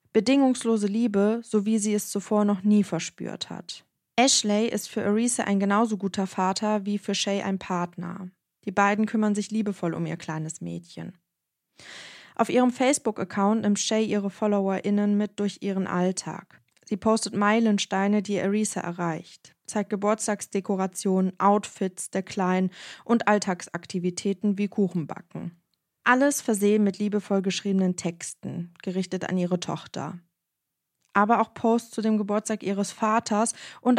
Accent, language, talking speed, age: German, German, 140 wpm, 20-39